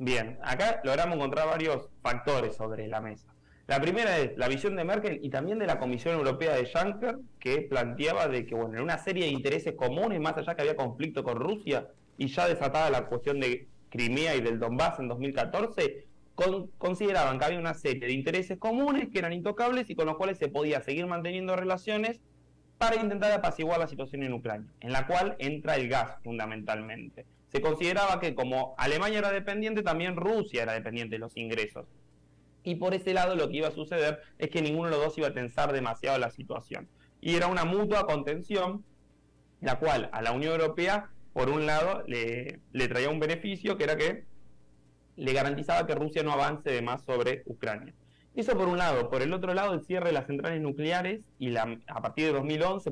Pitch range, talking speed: 120-180 Hz, 195 wpm